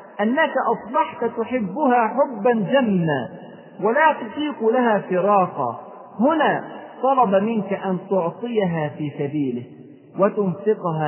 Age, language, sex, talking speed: 40-59, Arabic, male, 90 wpm